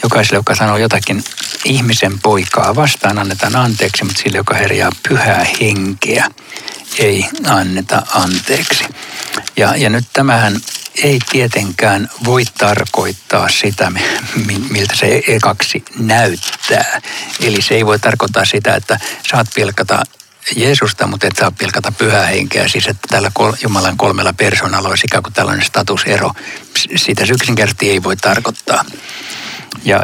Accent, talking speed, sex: native, 130 wpm, male